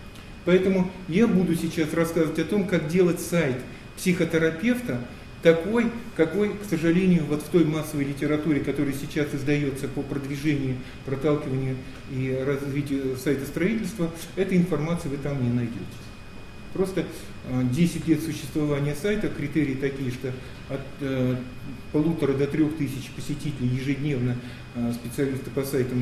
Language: Russian